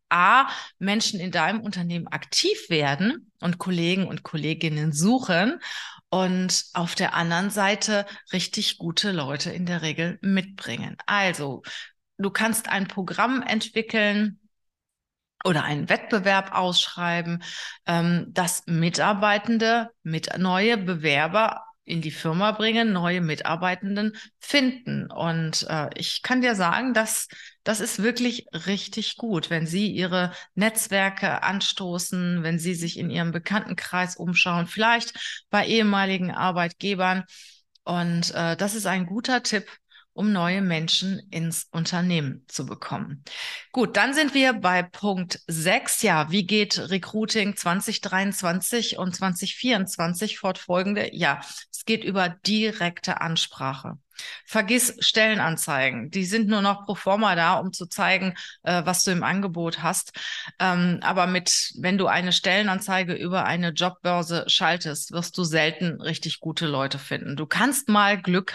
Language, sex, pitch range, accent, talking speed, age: German, female, 170-210 Hz, German, 130 wpm, 30-49